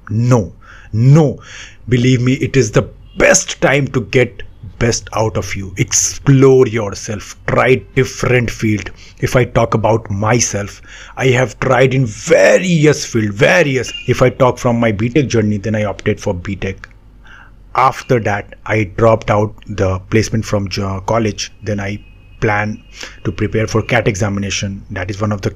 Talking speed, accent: 160 wpm, native